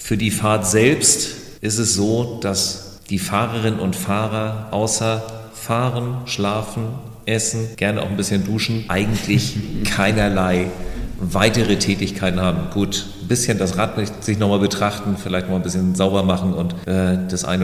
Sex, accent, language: male, German, German